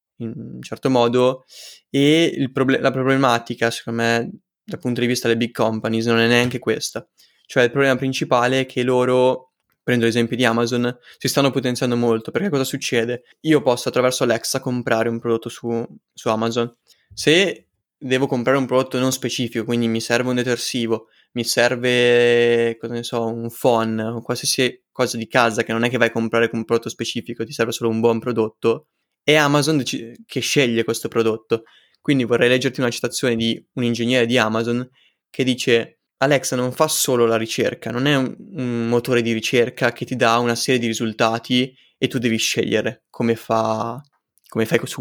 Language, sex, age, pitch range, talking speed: Italian, male, 20-39, 115-130 Hz, 185 wpm